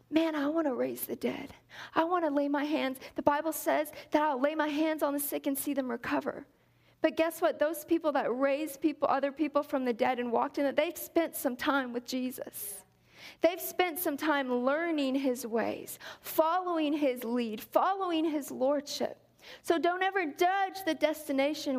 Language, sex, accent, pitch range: English, female, American, 260-320 Hz